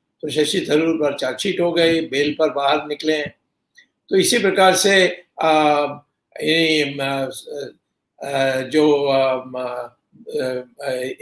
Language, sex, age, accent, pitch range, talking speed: Hindi, male, 60-79, native, 140-175 Hz, 90 wpm